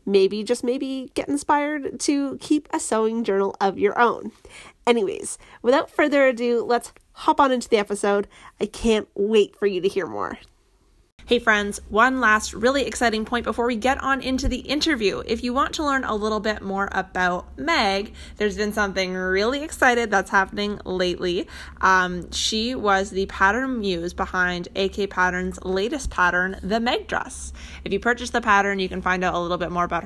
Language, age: English, 20-39